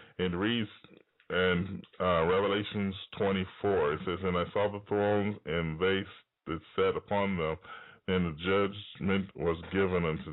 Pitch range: 90-105 Hz